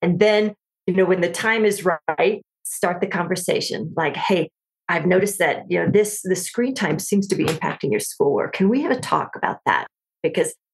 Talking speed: 205 wpm